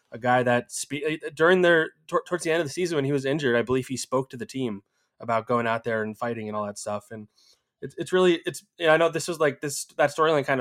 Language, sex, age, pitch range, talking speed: English, male, 20-39, 110-135 Hz, 265 wpm